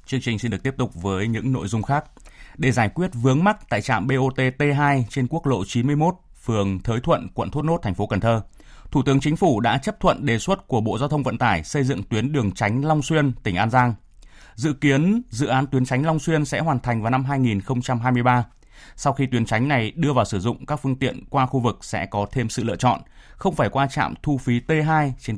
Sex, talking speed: male, 240 wpm